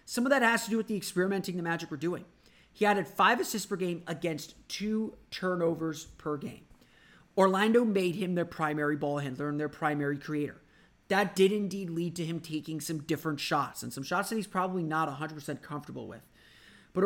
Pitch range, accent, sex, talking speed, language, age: 150-185 Hz, American, male, 195 wpm, English, 30-49